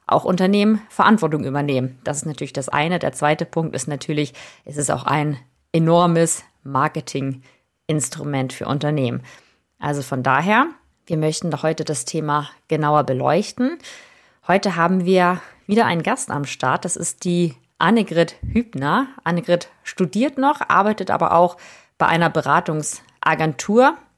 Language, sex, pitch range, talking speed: German, female, 150-185 Hz, 135 wpm